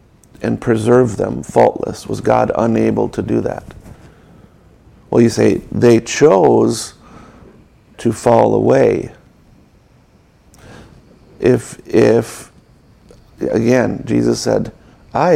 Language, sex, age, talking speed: English, male, 50-69, 95 wpm